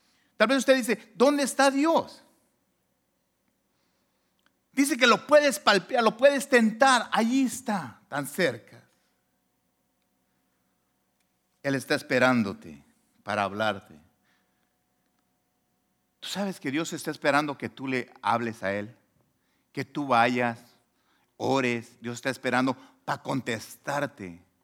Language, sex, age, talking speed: Spanish, male, 50-69, 110 wpm